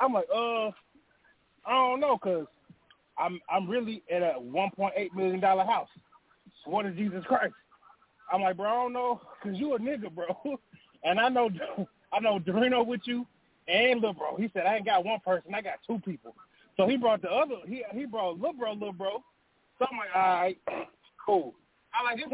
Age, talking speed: 20-39, 195 wpm